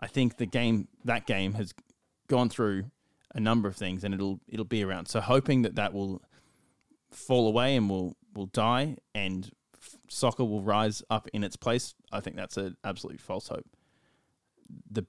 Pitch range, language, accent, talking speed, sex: 100-125 Hz, English, Australian, 185 wpm, male